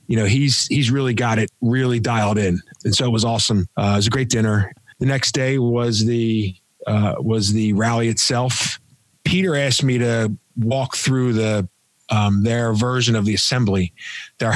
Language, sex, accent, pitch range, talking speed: English, male, American, 110-135 Hz, 185 wpm